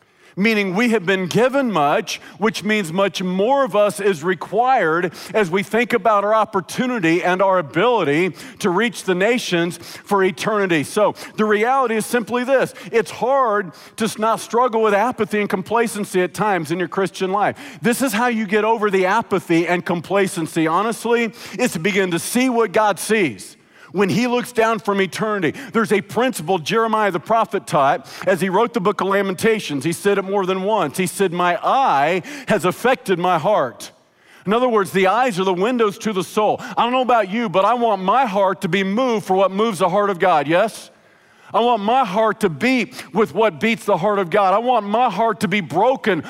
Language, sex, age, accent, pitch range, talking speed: English, male, 50-69, American, 190-225 Hz, 200 wpm